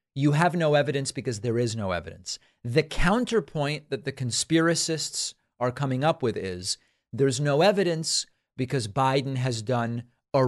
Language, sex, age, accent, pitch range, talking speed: English, male, 40-59, American, 120-150 Hz, 155 wpm